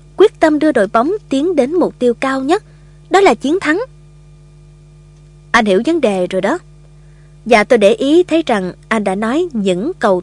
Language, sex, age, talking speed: Vietnamese, female, 20-39, 190 wpm